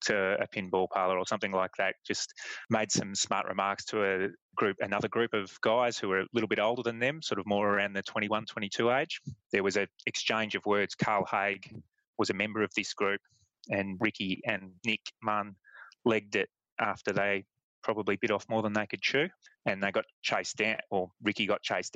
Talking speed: 210 wpm